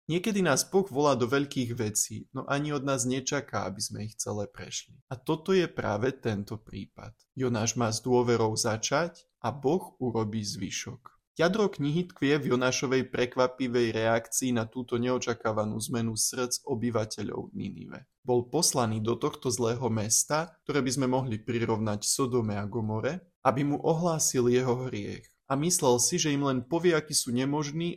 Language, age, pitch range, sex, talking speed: Slovak, 20-39, 115-140 Hz, male, 160 wpm